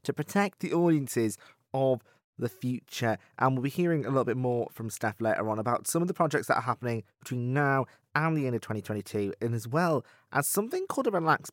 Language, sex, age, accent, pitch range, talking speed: English, male, 20-39, British, 115-155 Hz, 220 wpm